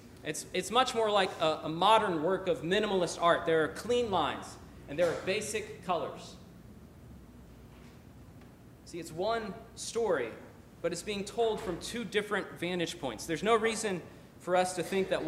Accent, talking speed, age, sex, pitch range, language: American, 165 wpm, 40-59, male, 145-195 Hz, English